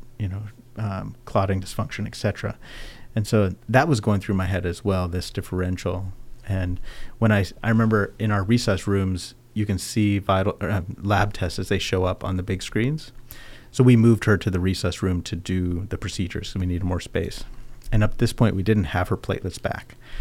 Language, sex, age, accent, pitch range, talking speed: English, male, 40-59, American, 95-120 Hz, 210 wpm